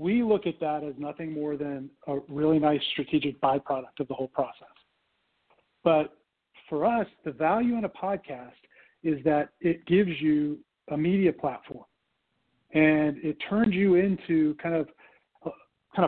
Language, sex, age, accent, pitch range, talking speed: English, male, 40-59, American, 150-175 Hz, 155 wpm